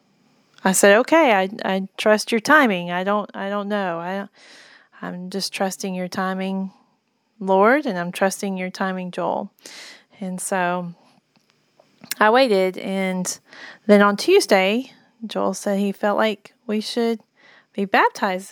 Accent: American